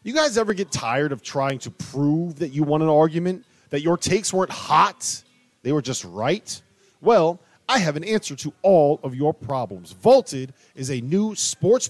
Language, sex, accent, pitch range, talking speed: English, male, American, 135-200 Hz, 190 wpm